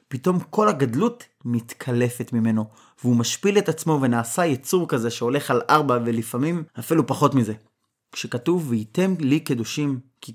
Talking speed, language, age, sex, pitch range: 140 wpm, Hebrew, 30-49, male, 120-165 Hz